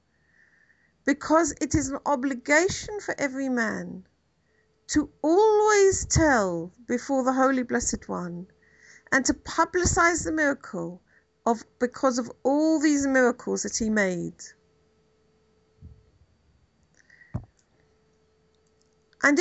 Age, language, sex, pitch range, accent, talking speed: 50-69, English, female, 200-295 Hz, British, 95 wpm